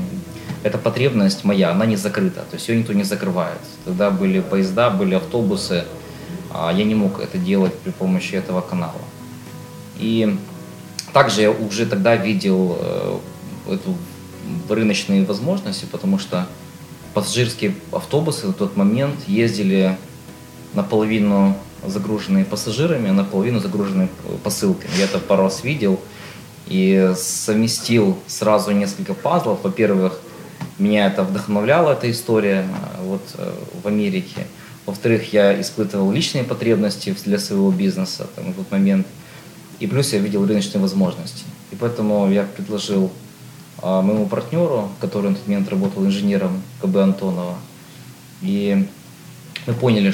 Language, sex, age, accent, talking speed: Russian, male, 20-39, native, 125 wpm